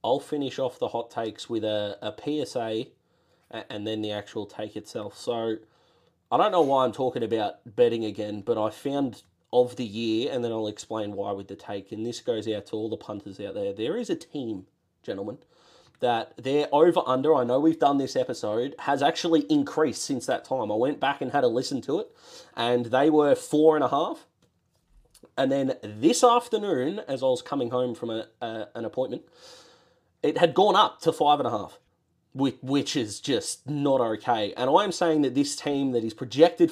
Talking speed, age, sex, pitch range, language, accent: 205 wpm, 20-39, male, 115-165 Hz, English, Australian